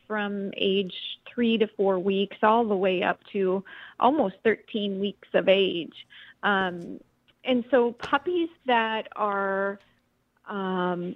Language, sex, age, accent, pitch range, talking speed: English, female, 30-49, American, 195-240 Hz, 125 wpm